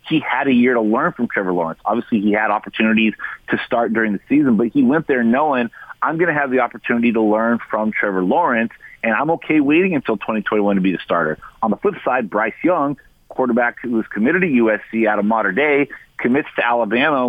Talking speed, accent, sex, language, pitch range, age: 220 wpm, American, male, English, 110-135 Hz, 30-49